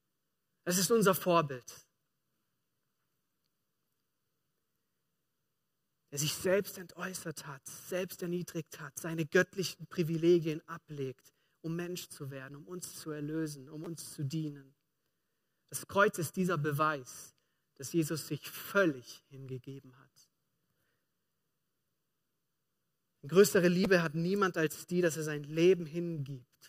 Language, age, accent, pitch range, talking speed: German, 40-59, German, 150-175 Hz, 115 wpm